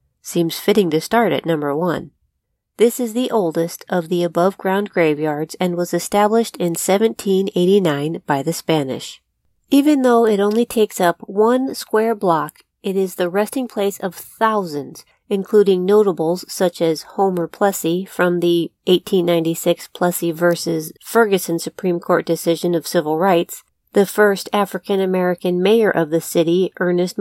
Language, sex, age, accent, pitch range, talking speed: English, female, 40-59, American, 170-220 Hz, 145 wpm